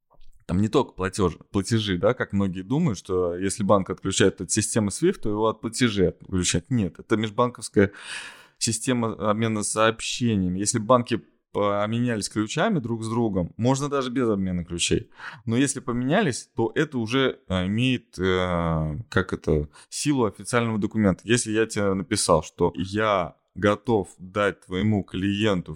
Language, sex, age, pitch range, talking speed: Russian, male, 20-39, 100-125 Hz, 135 wpm